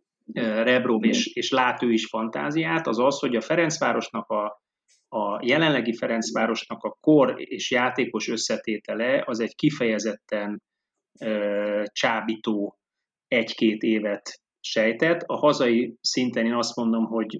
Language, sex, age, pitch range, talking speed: Hungarian, male, 30-49, 110-150 Hz, 120 wpm